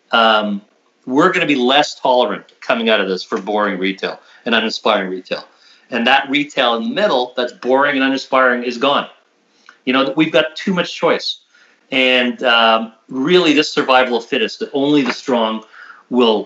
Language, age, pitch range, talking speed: English, 40-59, 115-140 Hz, 175 wpm